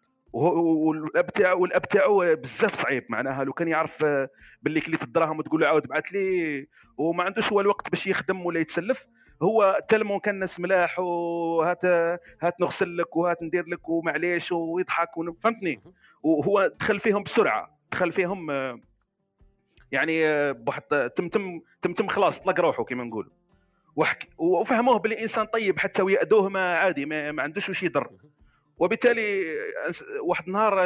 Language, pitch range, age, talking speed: Arabic, 160-215 Hz, 40-59, 140 wpm